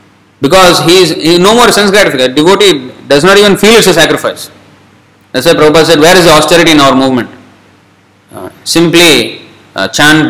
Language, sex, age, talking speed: English, male, 20-39, 180 wpm